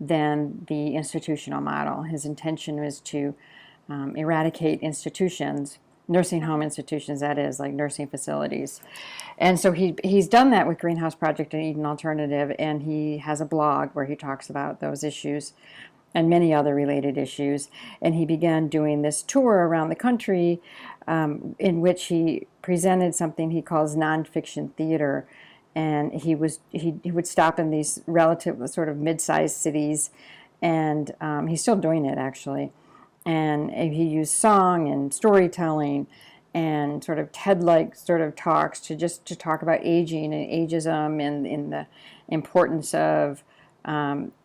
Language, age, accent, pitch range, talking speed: English, 50-69, American, 145-165 Hz, 155 wpm